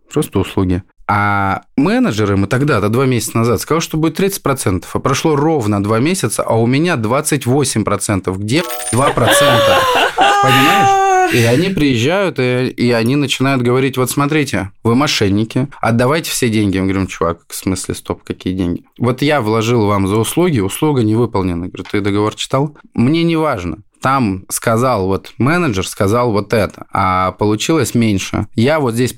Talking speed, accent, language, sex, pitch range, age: 160 wpm, native, Russian, male, 100-135 Hz, 20-39